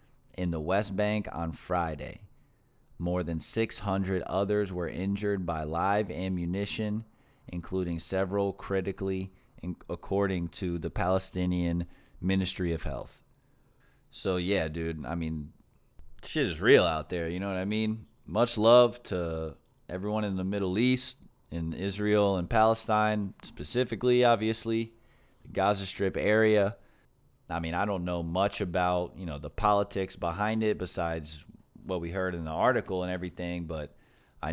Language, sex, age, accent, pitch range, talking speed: English, male, 20-39, American, 85-105 Hz, 145 wpm